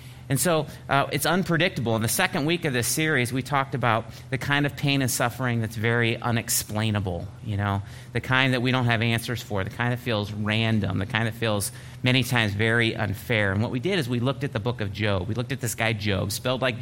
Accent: American